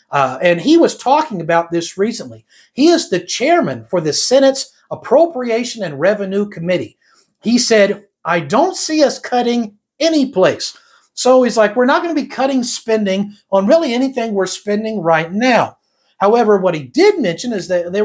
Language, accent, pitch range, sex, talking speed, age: English, American, 180-260 Hz, male, 175 wpm, 50-69